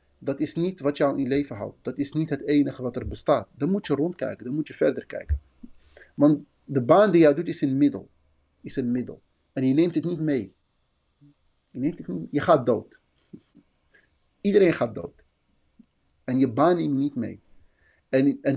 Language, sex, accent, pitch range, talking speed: Dutch, male, Dutch, 125-155 Hz, 195 wpm